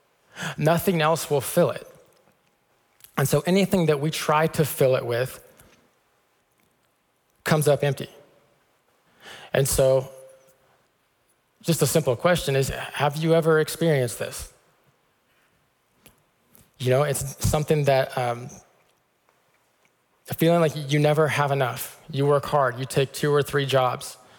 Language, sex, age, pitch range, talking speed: English, male, 20-39, 135-155 Hz, 125 wpm